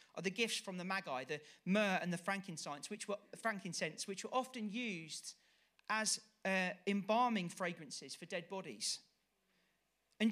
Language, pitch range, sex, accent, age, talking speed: English, 180-220 Hz, male, British, 40-59, 150 wpm